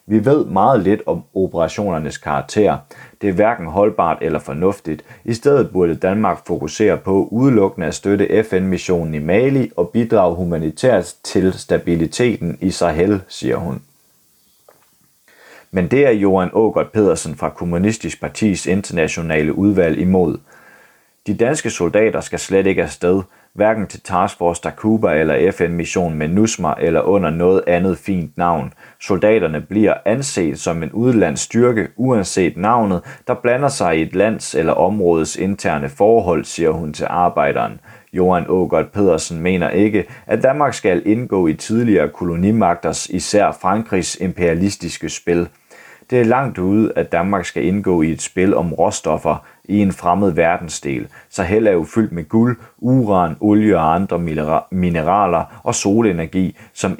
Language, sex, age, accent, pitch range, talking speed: Danish, male, 30-49, native, 85-105 Hz, 145 wpm